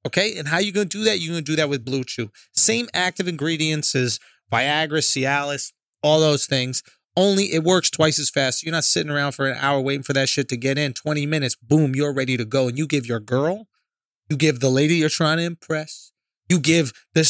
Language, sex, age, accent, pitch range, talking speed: English, male, 30-49, American, 140-185 Hz, 230 wpm